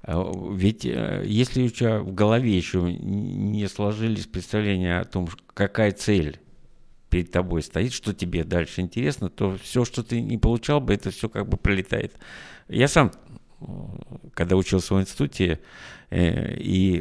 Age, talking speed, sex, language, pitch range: 50-69, 140 wpm, male, Russian, 90-120 Hz